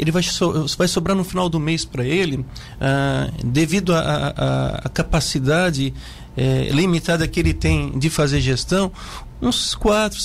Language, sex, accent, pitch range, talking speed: Portuguese, male, Brazilian, 145-180 Hz, 125 wpm